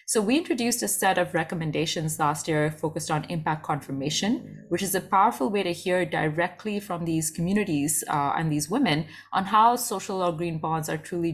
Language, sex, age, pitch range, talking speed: English, female, 20-39, 160-200 Hz, 190 wpm